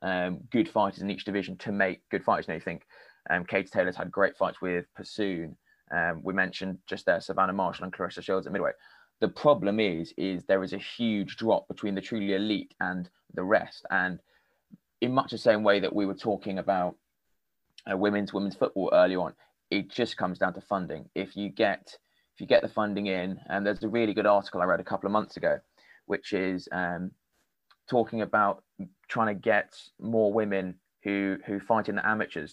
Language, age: English, 20-39